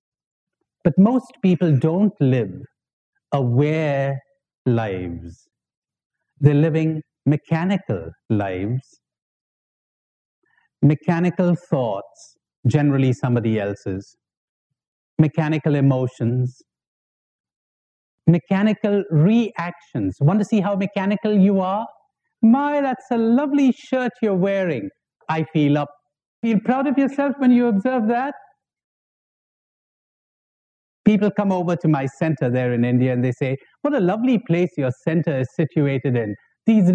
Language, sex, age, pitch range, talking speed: English, male, 60-79, 130-200 Hz, 110 wpm